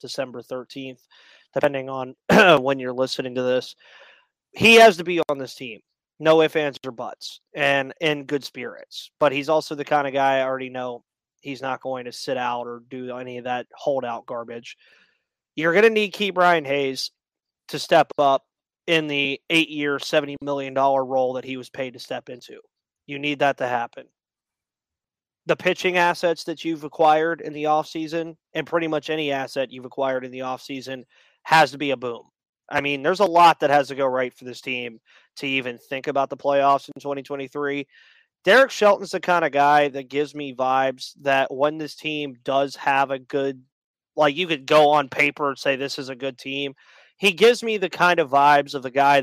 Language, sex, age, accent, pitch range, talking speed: English, male, 20-39, American, 130-155 Hz, 200 wpm